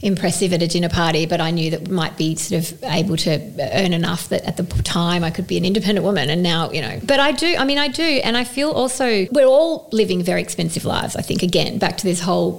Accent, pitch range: Australian, 175-220 Hz